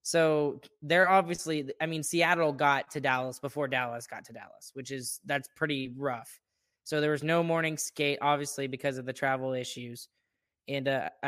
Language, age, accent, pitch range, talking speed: English, 10-29, American, 135-160 Hz, 170 wpm